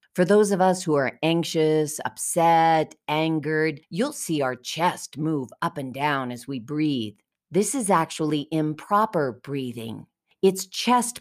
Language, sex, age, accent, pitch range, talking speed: English, female, 40-59, American, 140-190 Hz, 145 wpm